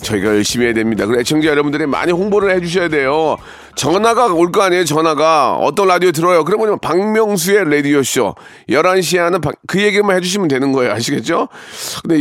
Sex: male